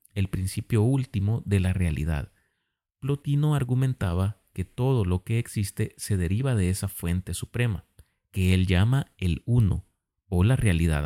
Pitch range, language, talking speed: 95-115 Hz, Spanish, 145 wpm